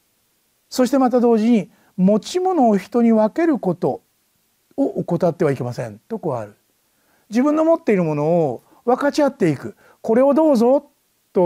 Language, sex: Japanese, male